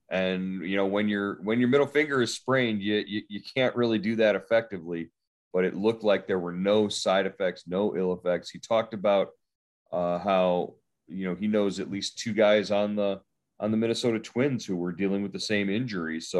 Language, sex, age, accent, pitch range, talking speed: English, male, 30-49, American, 95-110 Hz, 210 wpm